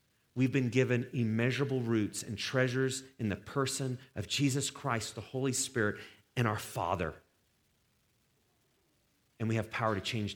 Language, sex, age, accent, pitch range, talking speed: English, male, 30-49, American, 115-150 Hz, 145 wpm